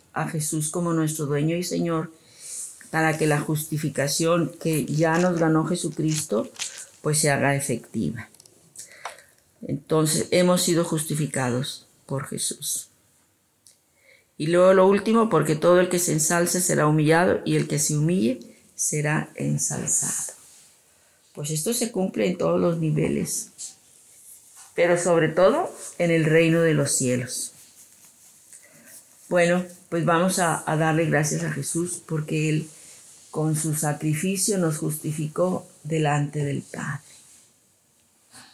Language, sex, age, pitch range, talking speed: Spanish, female, 40-59, 145-170 Hz, 125 wpm